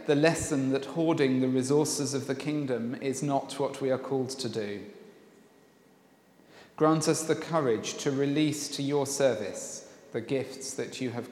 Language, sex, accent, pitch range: English, male, British, 125-145 Hz